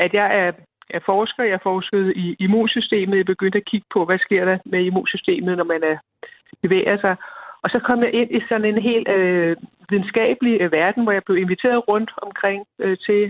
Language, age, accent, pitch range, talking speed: Danish, 60-79, native, 185-225 Hz, 180 wpm